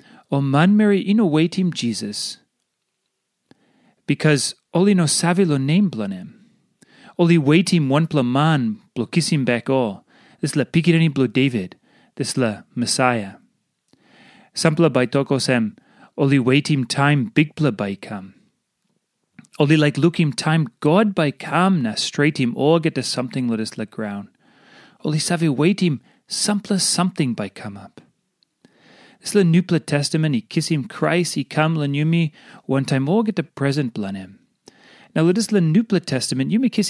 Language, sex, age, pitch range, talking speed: English, male, 30-49, 135-195 Hz, 175 wpm